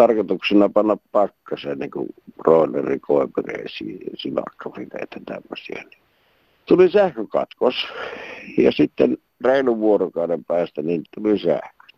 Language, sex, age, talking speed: Finnish, male, 60-79, 105 wpm